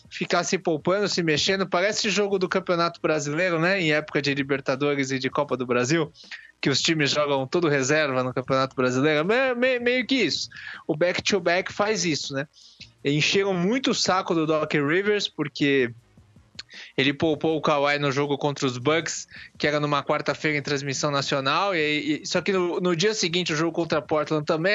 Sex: male